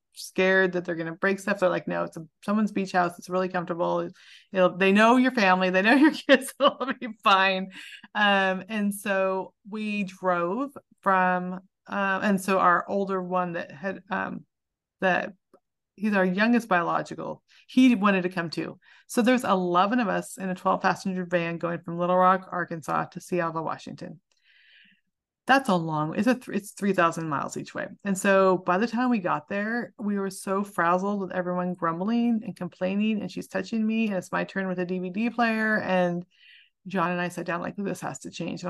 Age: 30-49